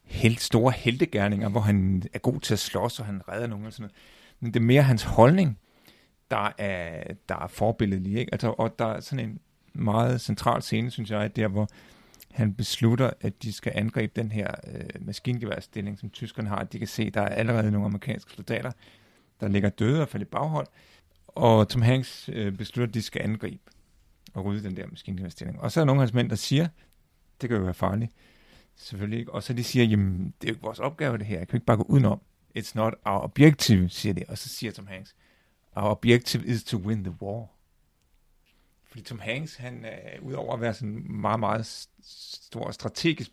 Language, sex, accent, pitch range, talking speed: Danish, male, native, 100-120 Hz, 215 wpm